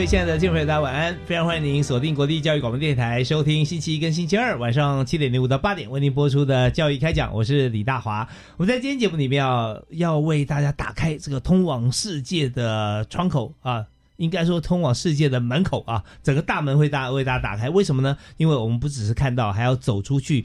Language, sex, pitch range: Chinese, male, 125-160 Hz